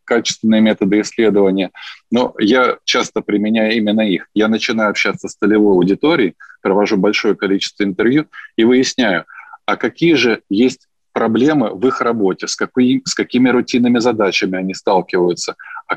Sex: male